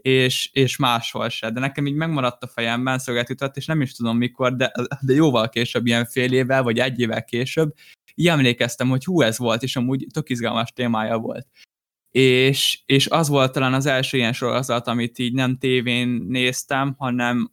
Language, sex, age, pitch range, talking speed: Hungarian, male, 10-29, 120-145 Hz, 180 wpm